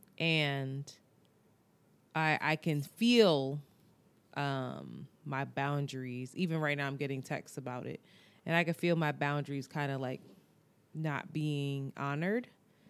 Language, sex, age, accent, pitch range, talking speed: English, female, 20-39, American, 140-170 Hz, 130 wpm